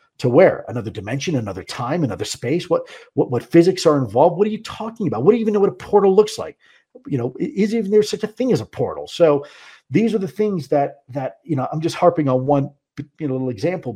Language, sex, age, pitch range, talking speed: English, male, 50-69, 120-175 Hz, 250 wpm